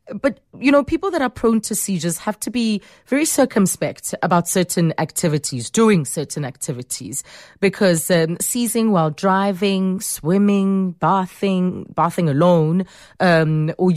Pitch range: 170-215 Hz